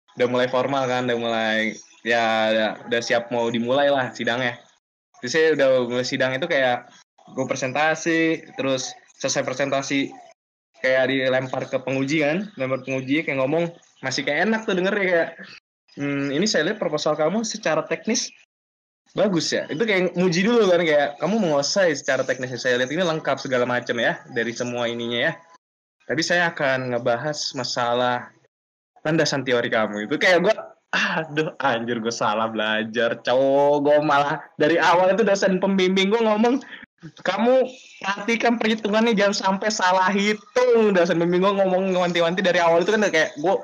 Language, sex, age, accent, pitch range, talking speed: Indonesian, male, 20-39, native, 135-190 Hz, 160 wpm